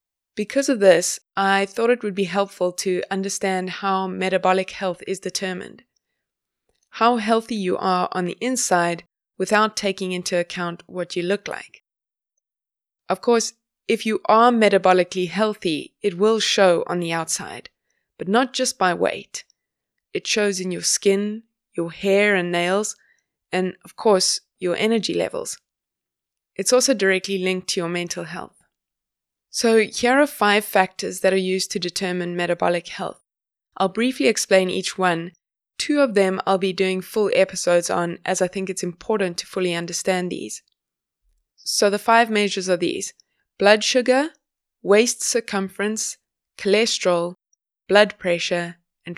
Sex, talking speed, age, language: female, 150 wpm, 20-39, English